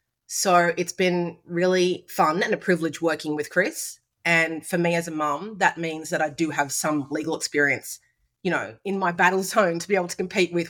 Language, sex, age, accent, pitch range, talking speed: English, female, 30-49, Australian, 155-180 Hz, 215 wpm